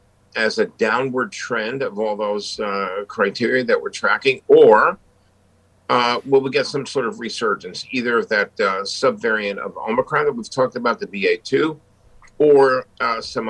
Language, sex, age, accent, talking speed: English, male, 50-69, American, 165 wpm